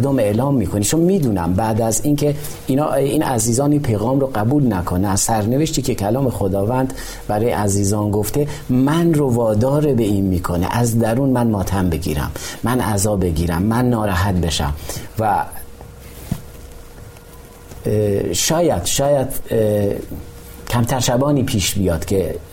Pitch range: 95-125 Hz